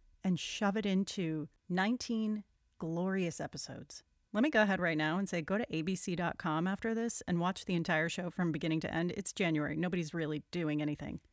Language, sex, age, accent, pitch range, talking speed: English, female, 30-49, American, 165-220 Hz, 185 wpm